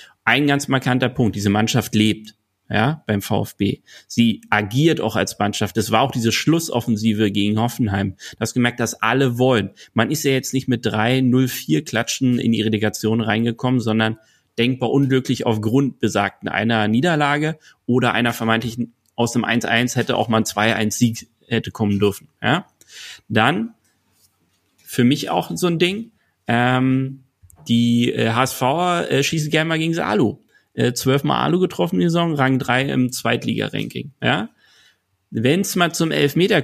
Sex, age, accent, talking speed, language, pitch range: male, 30-49, German, 155 wpm, German, 110-135 Hz